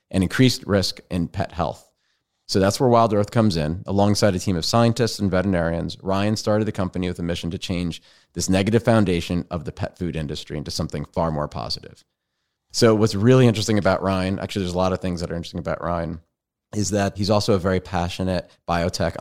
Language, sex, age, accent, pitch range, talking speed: English, male, 30-49, American, 85-105 Hz, 210 wpm